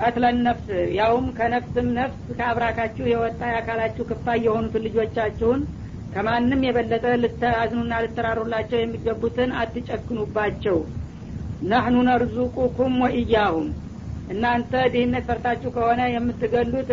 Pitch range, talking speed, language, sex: 225-240 Hz, 90 wpm, Amharic, female